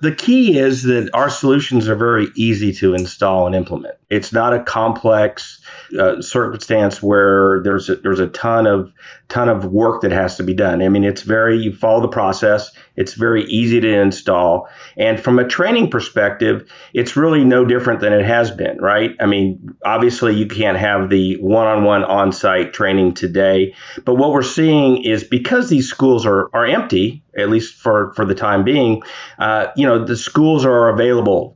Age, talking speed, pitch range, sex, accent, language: 50-69, 190 wpm, 100-120 Hz, male, American, English